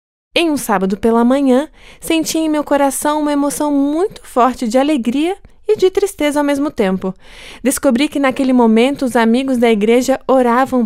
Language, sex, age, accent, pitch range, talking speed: Portuguese, female, 20-39, Brazilian, 205-275 Hz, 165 wpm